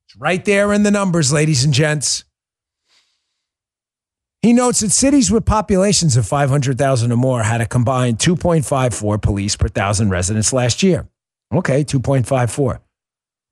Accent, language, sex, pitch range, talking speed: American, English, male, 120-175 Hz, 135 wpm